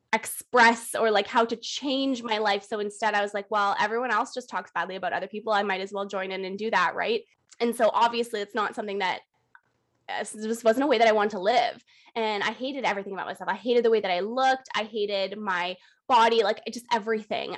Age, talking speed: 20-39, 230 wpm